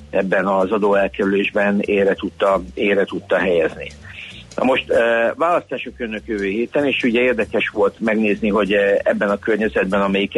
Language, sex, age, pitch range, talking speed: Hungarian, male, 60-79, 100-115 Hz, 145 wpm